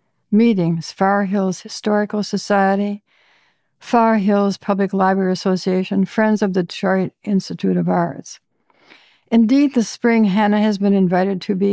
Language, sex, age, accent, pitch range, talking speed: English, female, 60-79, American, 190-220 Hz, 135 wpm